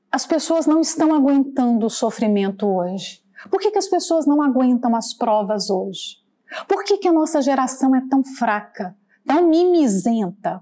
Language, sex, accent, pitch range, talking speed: Portuguese, female, Brazilian, 210-275 Hz, 165 wpm